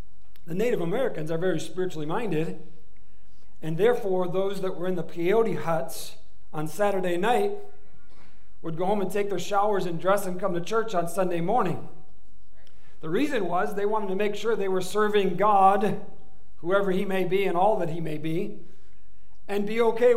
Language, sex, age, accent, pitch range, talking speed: English, male, 50-69, American, 170-205 Hz, 180 wpm